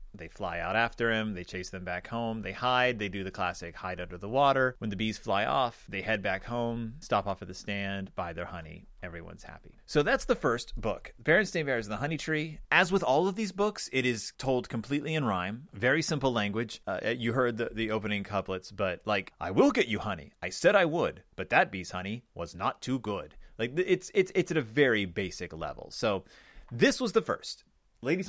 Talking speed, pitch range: 225 wpm, 105-155 Hz